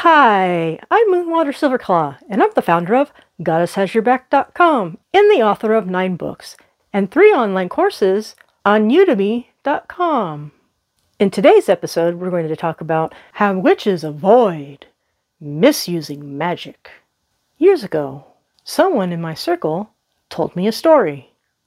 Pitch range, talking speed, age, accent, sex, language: 165-260 Hz, 125 wpm, 40-59, American, female, English